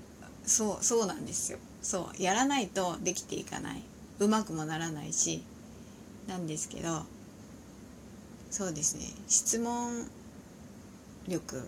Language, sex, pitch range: Japanese, female, 170-235 Hz